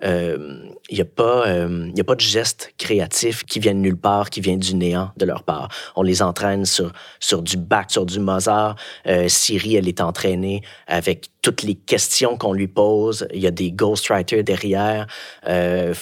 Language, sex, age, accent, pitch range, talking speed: French, male, 30-49, Canadian, 90-105 Hz, 190 wpm